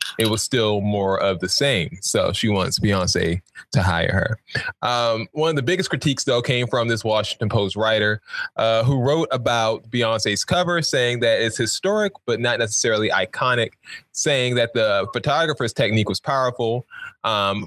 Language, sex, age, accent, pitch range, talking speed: English, male, 20-39, American, 110-135 Hz, 165 wpm